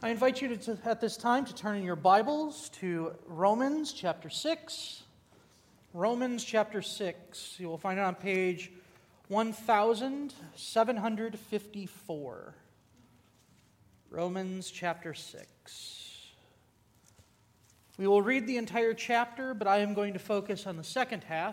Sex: male